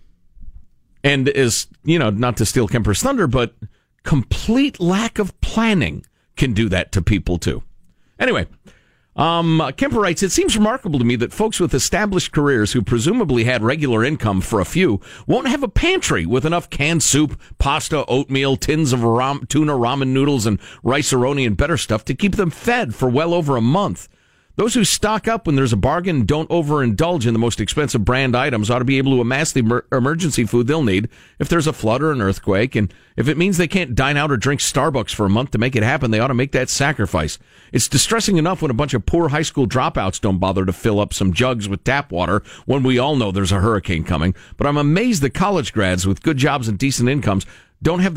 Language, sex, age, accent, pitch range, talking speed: English, male, 50-69, American, 110-160 Hz, 215 wpm